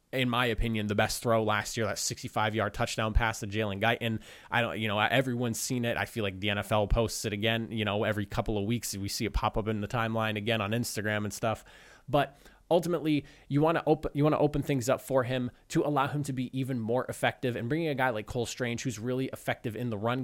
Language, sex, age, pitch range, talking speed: English, male, 20-39, 115-145 Hz, 250 wpm